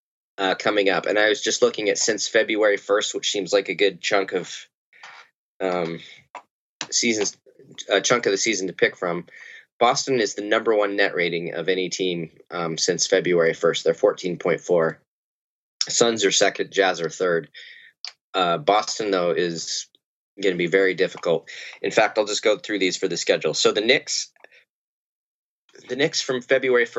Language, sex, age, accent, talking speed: English, male, 20-39, American, 170 wpm